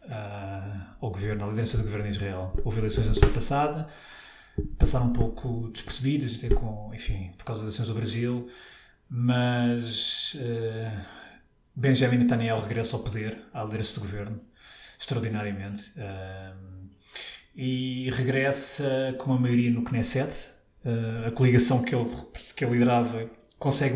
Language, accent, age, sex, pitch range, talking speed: Portuguese, Portuguese, 20-39, male, 115-130 Hz, 140 wpm